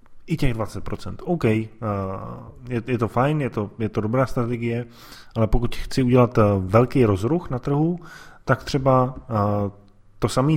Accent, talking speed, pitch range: native, 130 wpm, 105-125 Hz